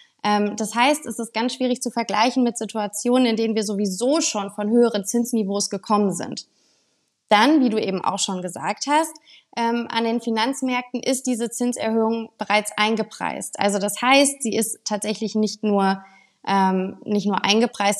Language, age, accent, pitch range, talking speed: German, 20-39, German, 195-225 Hz, 155 wpm